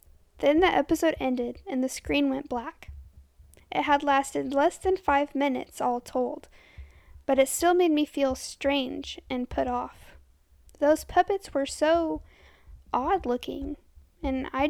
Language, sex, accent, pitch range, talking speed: English, female, American, 250-295 Hz, 145 wpm